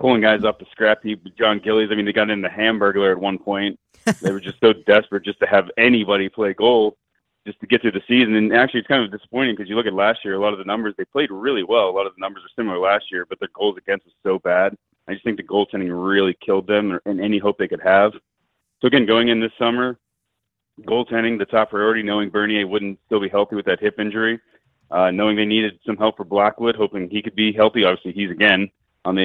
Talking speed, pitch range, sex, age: 255 wpm, 100-110 Hz, male, 30-49